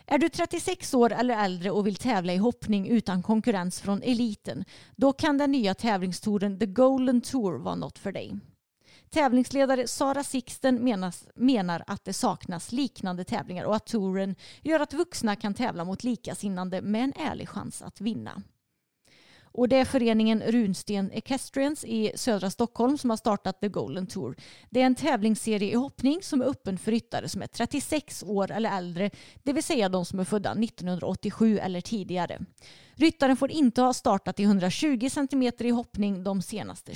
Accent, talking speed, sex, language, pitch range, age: native, 170 wpm, female, Swedish, 195-255 Hz, 30-49